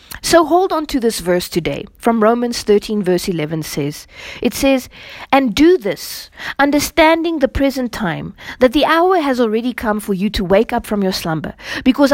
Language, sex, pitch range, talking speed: English, female, 215-300 Hz, 185 wpm